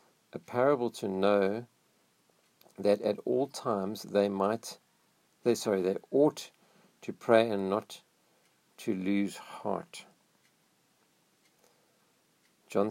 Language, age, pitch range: English, 50-69, 100-120 Hz